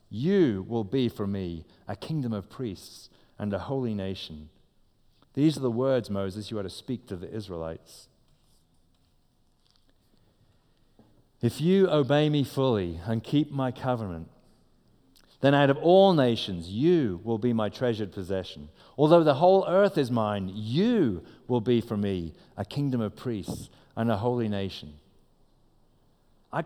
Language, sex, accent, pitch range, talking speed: English, male, British, 105-145 Hz, 145 wpm